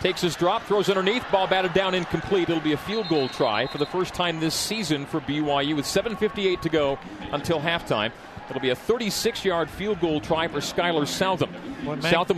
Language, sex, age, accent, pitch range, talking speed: English, male, 40-59, American, 155-200 Hz, 195 wpm